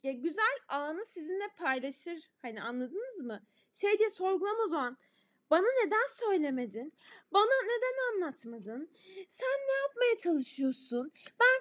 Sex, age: female, 10-29